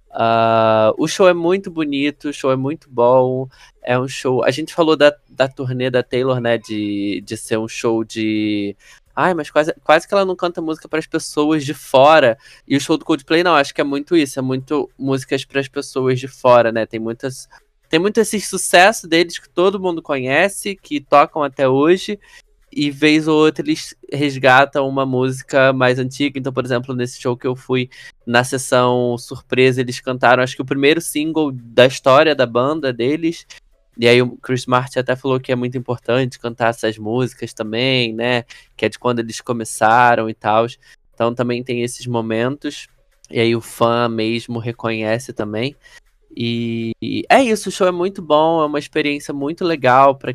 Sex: male